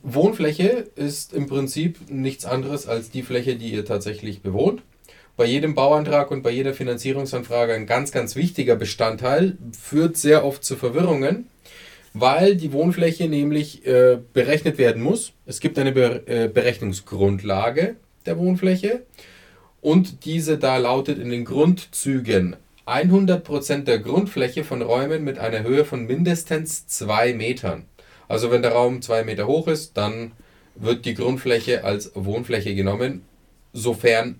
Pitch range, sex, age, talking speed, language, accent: 115-145 Hz, male, 30-49, 140 wpm, German, German